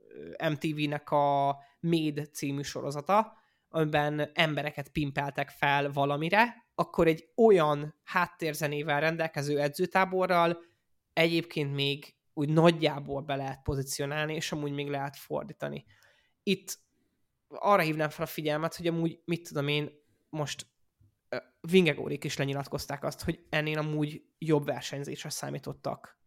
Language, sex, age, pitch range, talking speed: Hungarian, male, 20-39, 140-170 Hz, 115 wpm